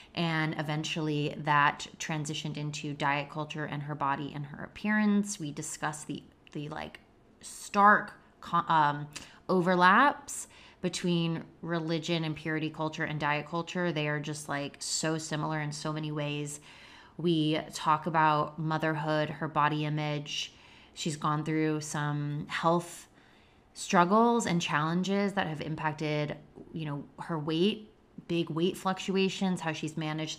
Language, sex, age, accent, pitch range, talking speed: English, female, 20-39, American, 155-180 Hz, 130 wpm